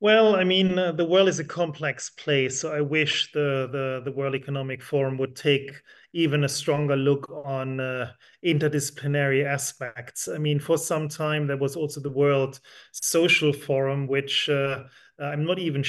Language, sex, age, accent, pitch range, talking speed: English, male, 30-49, German, 130-145 Hz, 175 wpm